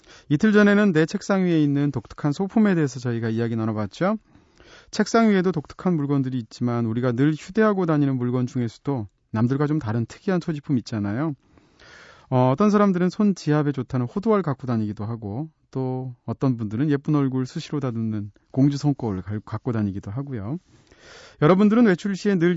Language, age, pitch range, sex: Korean, 30-49, 120-175 Hz, male